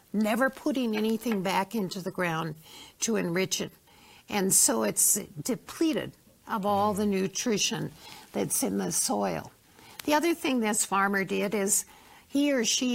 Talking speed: 150 wpm